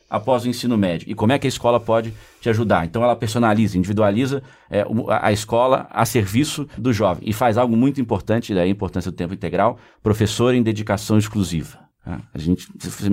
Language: Portuguese